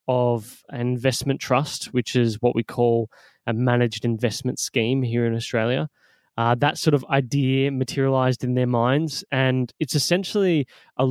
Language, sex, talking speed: English, male, 155 wpm